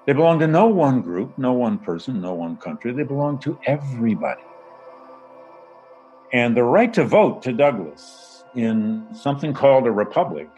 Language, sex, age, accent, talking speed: English, male, 60-79, American, 160 wpm